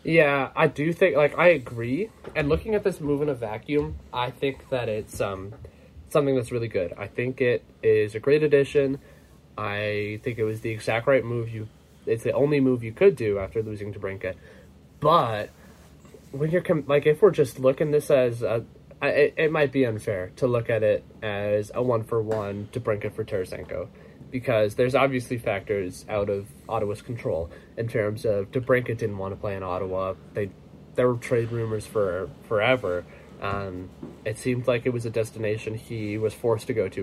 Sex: male